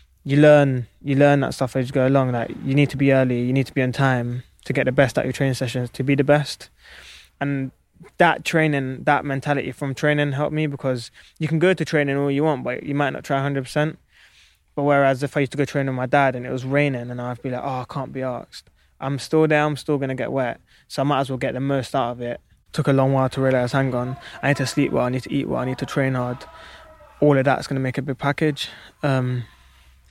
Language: English